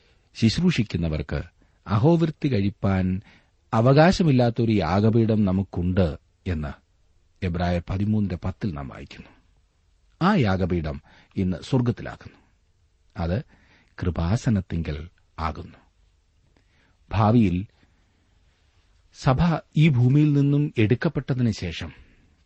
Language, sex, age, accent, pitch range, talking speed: Malayalam, male, 40-59, native, 85-110 Hz, 70 wpm